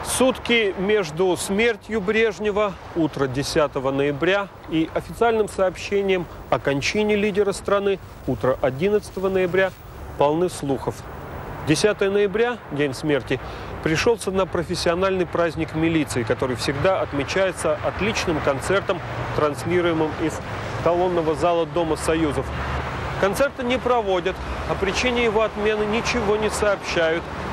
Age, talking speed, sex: 40-59, 105 wpm, male